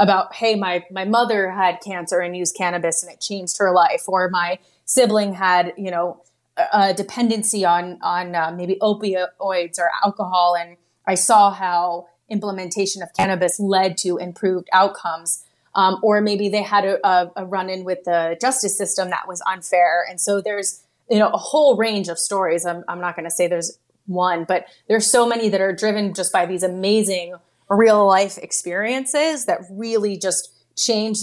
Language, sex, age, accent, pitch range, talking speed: English, female, 30-49, American, 180-210 Hz, 185 wpm